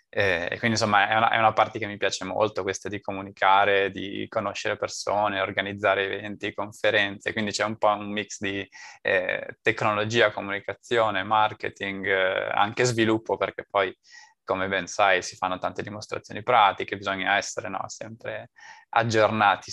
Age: 20-39